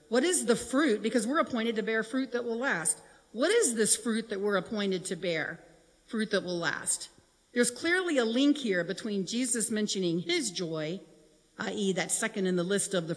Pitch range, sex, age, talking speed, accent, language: 180-230 Hz, female, 50-69, 200 wpm, American, English